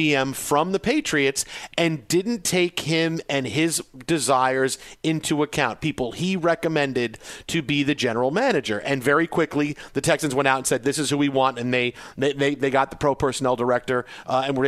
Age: 40-59